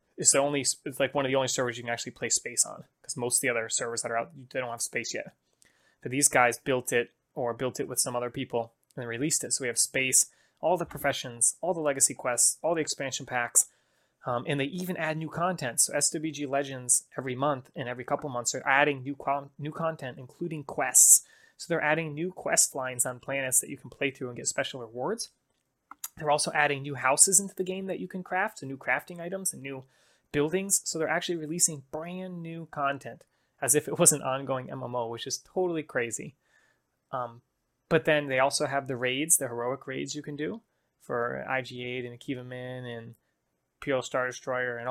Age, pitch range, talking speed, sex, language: 20-39, 125-150 Hz, 215 wpm, male, English